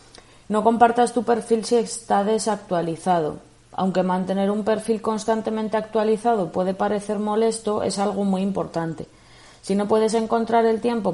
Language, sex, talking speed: Spanish, female, 140 wpm